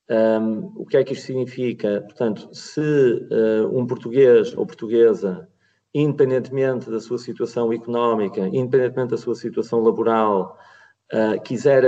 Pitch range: 110-150 Hz